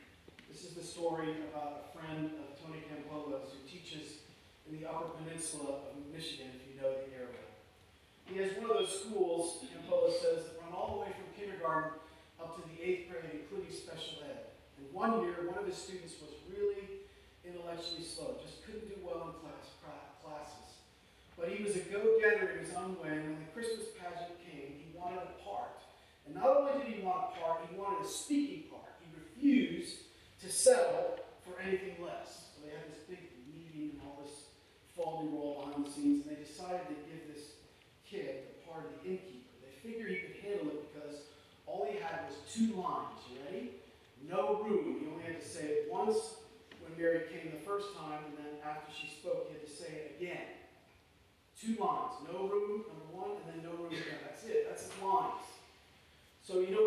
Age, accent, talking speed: 40-59, American, 200 wpm